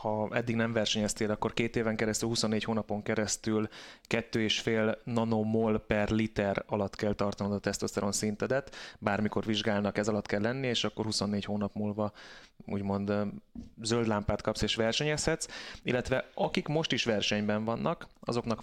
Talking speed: 145 wpm